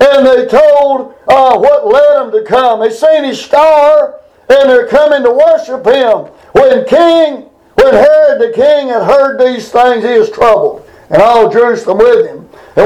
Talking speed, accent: 175 wpm, American